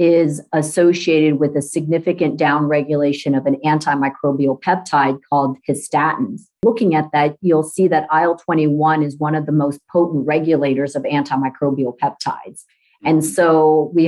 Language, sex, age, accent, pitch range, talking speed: English, female, 40-59, American, 145-165 Hz, 135 wpm